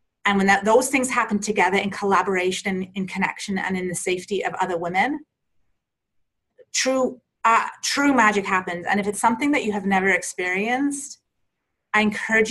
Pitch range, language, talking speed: 190-240 Hz, English, 170 wpm